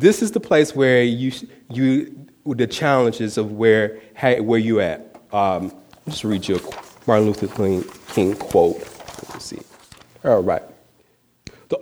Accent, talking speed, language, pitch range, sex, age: American, 175 wpm, English, 105-140 Hz, male, 30-49